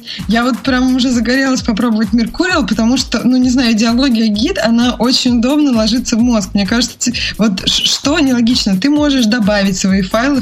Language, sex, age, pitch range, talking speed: Russian, female, 20-39, 200-240 Hz, 175 wpm